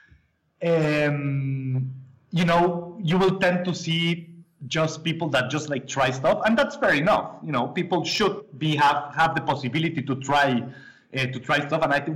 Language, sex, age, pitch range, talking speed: English, male, 30-49, 140-180 Hz, 185 wpm